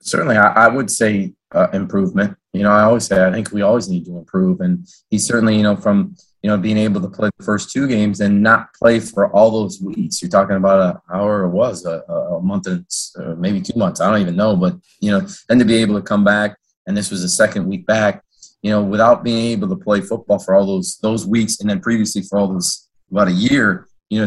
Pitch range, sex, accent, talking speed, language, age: 100-130 Hz, male, American, 245 wpm, English, 20-39